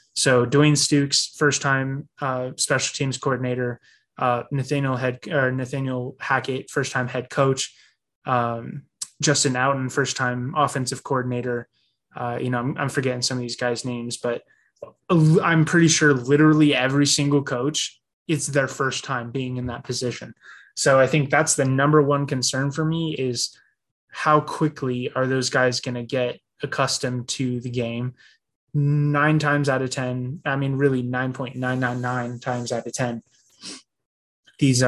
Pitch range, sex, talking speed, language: 125-145 Hz, male, 155 wpm, English